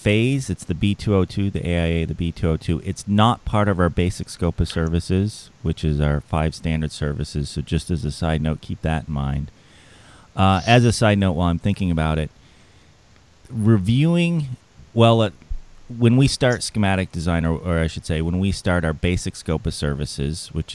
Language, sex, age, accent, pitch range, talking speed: English, male, 30-49, American, 80-100 Hz, 190 wpm